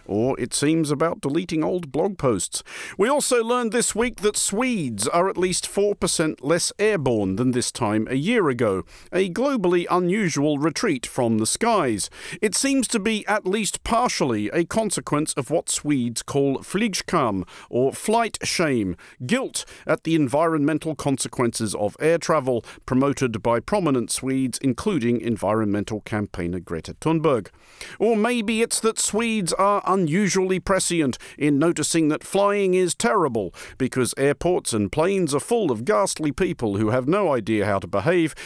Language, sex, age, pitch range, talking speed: English, male, 50-69, 125-180 Hz, 155 wpm